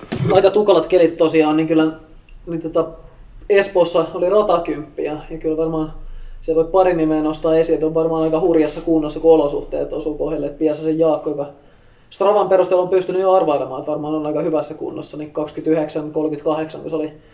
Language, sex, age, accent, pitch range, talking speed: Finnish, male, 20-39, native, 145-165 Hz, 170 wpm